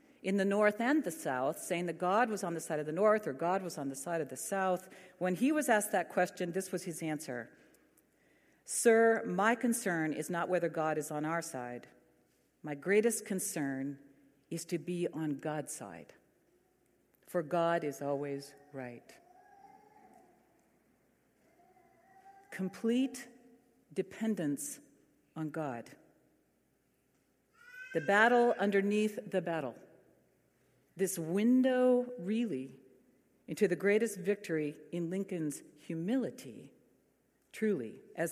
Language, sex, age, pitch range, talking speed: English, female, 50-69, 150-205 Hz, 125 wpm